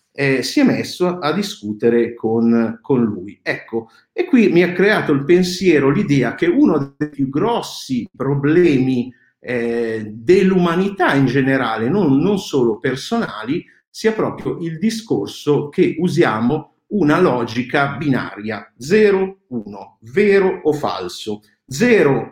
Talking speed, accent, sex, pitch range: 130 wpm, native, male, 130-180 Hz